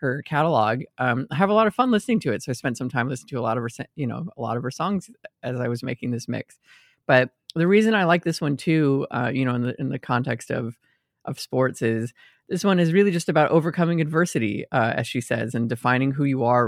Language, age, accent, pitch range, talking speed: English, 20-39, American, 120-150 Hz, 260 wpm